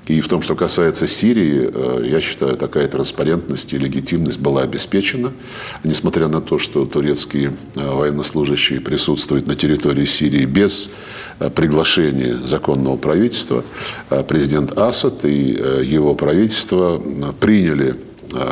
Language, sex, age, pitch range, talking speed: Russian, male, 50-69, 70-85 Hz, 110 wpm